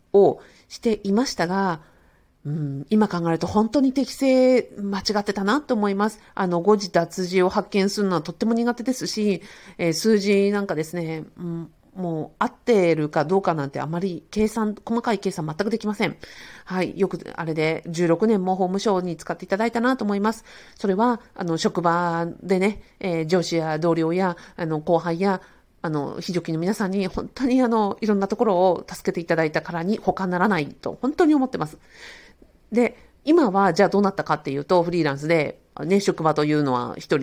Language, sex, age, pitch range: Japanese, female, 40-59, 160-210 Hz